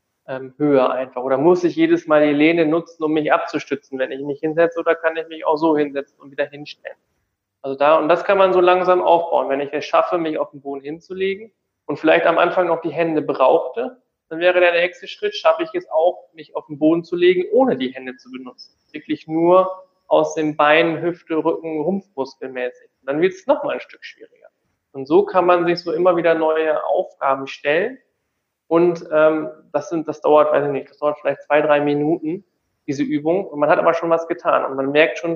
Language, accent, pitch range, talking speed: German, German, 145-180 Hz, 220 wpm